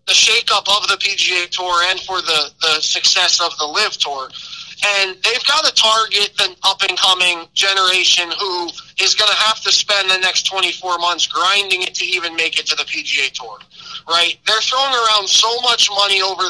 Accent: American